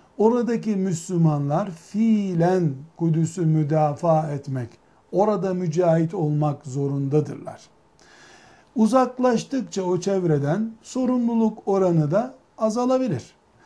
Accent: native